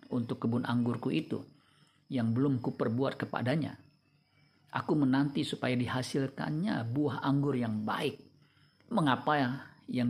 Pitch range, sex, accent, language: 120-140 Hz, male, native, Indonesian